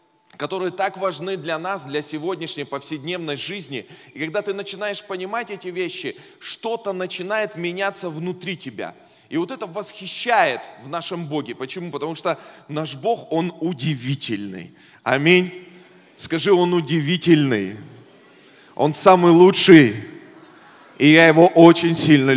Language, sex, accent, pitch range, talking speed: Russian, male, native, 140-180 Hz, 125 wpm